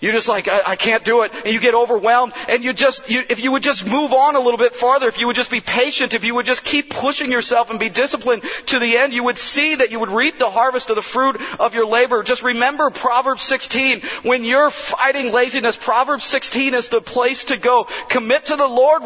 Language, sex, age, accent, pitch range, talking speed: English, male, 40-59, American, 235-275 Hz, 250 wpm